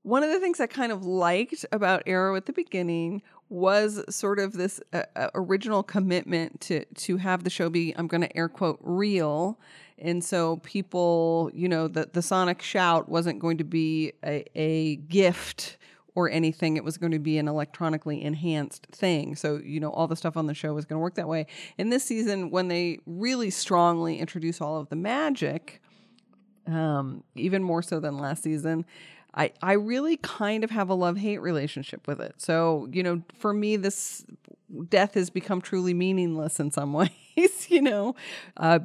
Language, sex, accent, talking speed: English, female, American, 185 wpm